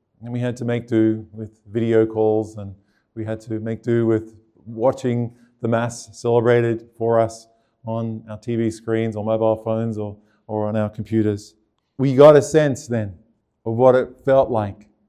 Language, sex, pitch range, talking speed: English, male, 110-130 Hz, 175 wpm